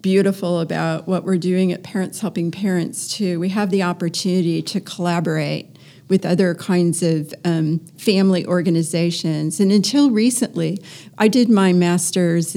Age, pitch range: 40-59, 165-190 Hz